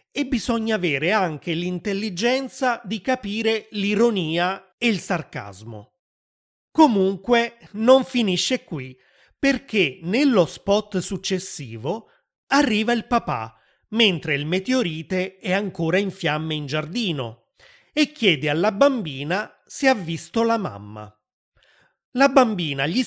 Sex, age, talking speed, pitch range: male, 30-49, 110 wpm, 165-235 Hz